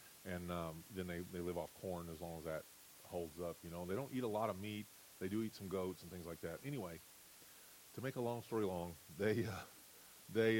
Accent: American